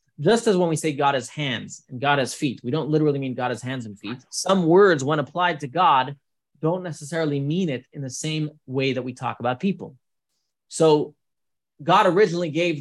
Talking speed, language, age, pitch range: 205 wpm, English, 20-39, 135-175 Hz